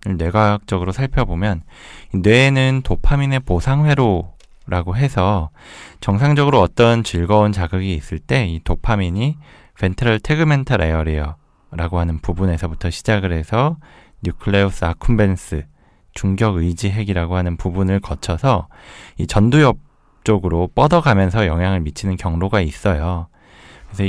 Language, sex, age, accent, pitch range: Korean, male, 20-39, native, 85-115 Hz